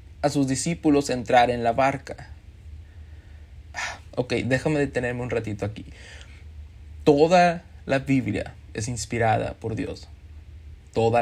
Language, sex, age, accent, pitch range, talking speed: Spanish, male, 30-49, Mexican, 105-155 Hz, 110 wpm